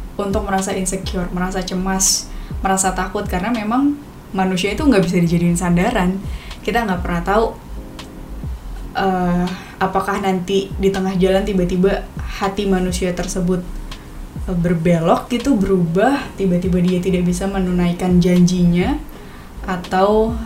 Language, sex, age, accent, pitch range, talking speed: Indonesian, female, 10-29, native, 180-210 Hz, 115 wpm